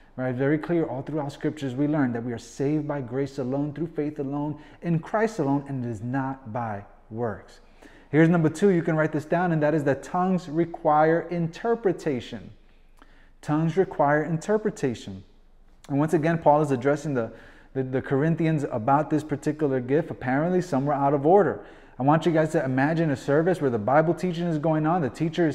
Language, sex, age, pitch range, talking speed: English, male, 30-49, 135-175 Hz, 195 wpm